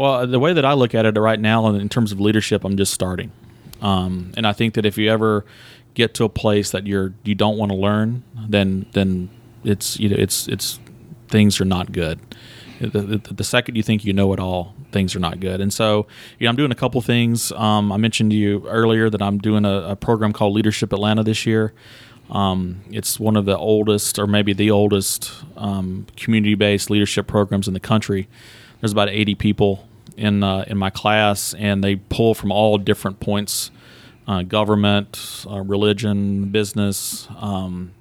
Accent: American